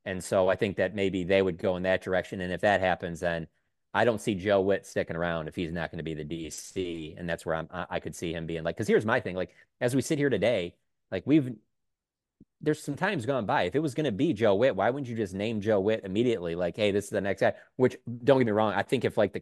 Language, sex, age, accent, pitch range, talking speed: English, male, 30-49, American, 90-115 Hz, 285 wpm